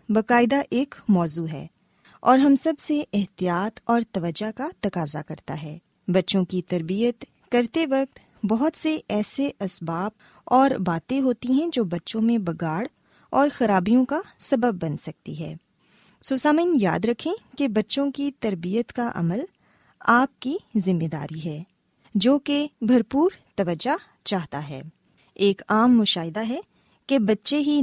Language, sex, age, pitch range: Urdu, female, 20-39, 185-270 Hz